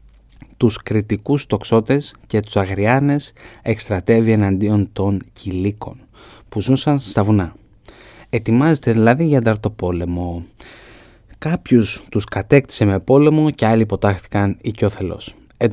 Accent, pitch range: native, 100-125 Hz